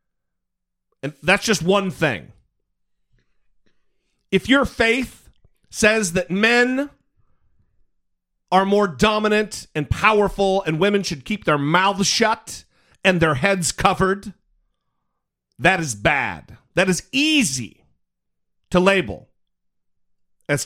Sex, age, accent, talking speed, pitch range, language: male, 40-59, American, 105 wpm, 150-215 Hz, English